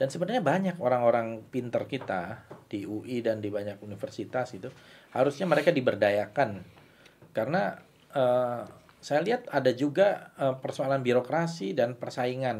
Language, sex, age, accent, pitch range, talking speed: Indonesian, male, 40-59, native, 110-150 Hz, 130 wpm